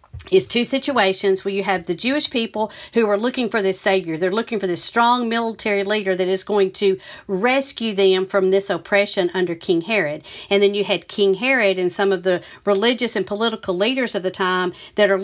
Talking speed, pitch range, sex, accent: 210 wpm, 185-235 Hz, female, American